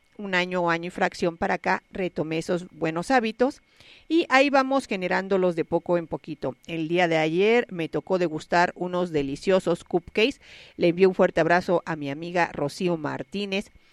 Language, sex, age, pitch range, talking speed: Spanish, female, 40-59, 160-210 Hz, 170 wpm